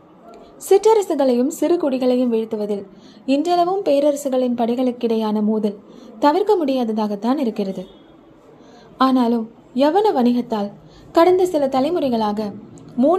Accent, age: native, 20-39